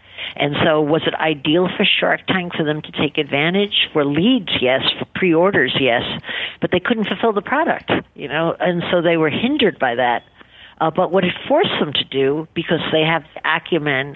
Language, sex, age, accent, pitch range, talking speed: English, female, 50-69, American, 145-175 Hz, 195 wpm